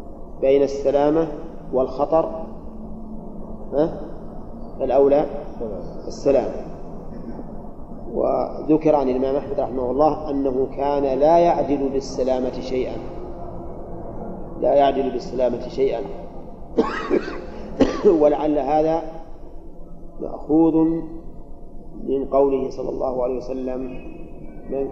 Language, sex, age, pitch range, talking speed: Arabic, male, 40-59, 135-155 Hz, 75 wpm